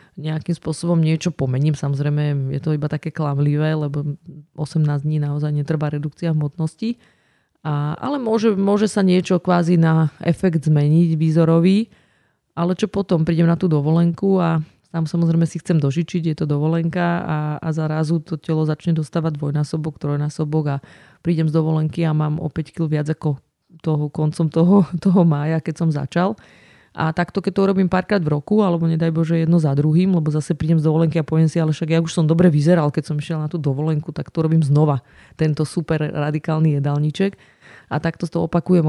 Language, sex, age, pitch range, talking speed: Slovak, female, 30-49, 155-170 Hz, 180 wpm